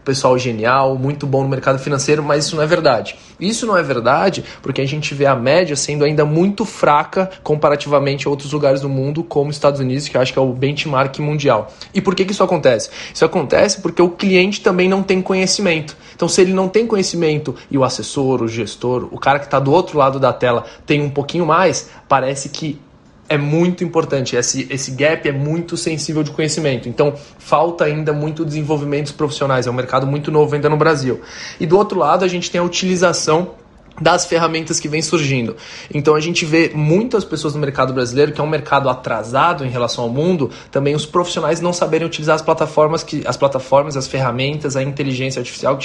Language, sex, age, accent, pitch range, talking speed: Portuguese, male, 20-39, Brazilian, 135-165 Hz, 205 wpm